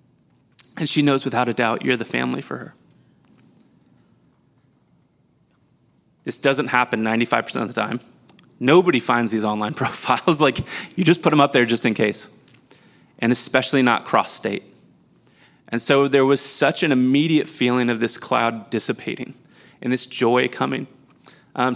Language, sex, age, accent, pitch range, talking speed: English, male, 30-49, American, 120-145 Hz, 150 wpm